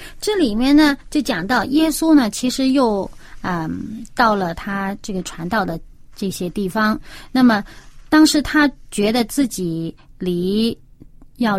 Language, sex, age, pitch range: Chinese, female, 30-49, 185-245 Hz